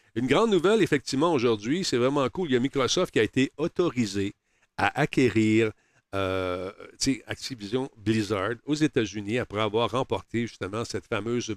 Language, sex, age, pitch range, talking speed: French, male, 50-69, 110-135 Hz, 150 wpm